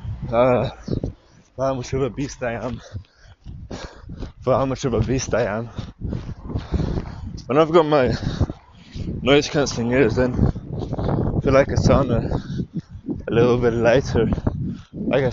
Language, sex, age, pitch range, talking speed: English, male, 20-39, 115-140 Hz, 135 wpm